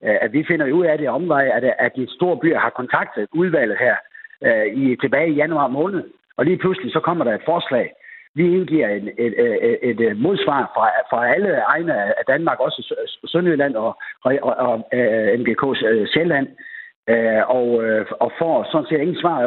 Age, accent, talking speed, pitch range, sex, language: 60-79, native, 165 wpm, 125-175 Hz, male, Danish